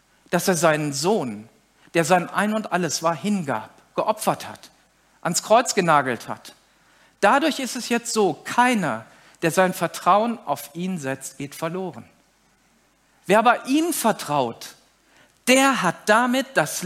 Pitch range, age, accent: 180-250 Hz, 50-69, German